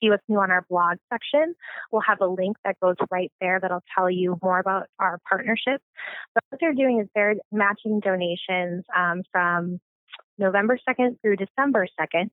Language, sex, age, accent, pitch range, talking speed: English, female, 20-39, American, 185-220 Hz, 175 wpm